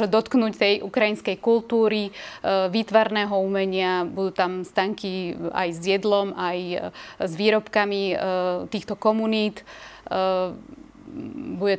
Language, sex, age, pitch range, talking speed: Slovak, female, 20-39, 195-215 Hz, 90 wpm